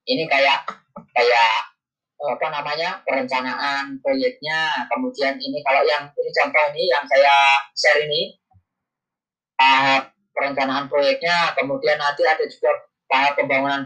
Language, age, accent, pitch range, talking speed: Indonesian, 20-39, native, 145-215 Hz, 120 wpm